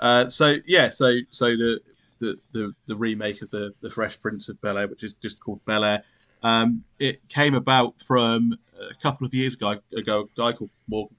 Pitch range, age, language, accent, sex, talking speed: 105-120 Hz, 30-49, English, British, male, 210 wpm